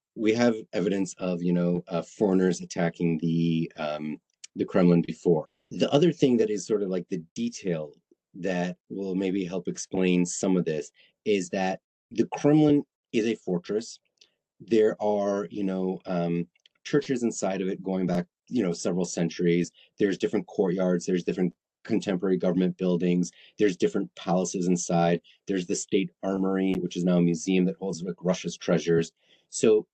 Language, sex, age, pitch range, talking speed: English, male, 30-49, 90-110 Hz, 160 wpm